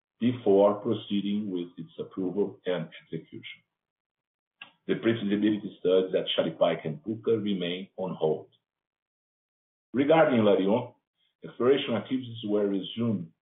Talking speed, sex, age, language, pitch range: 105 wpm, male, 50-69, English, 95-115 Hz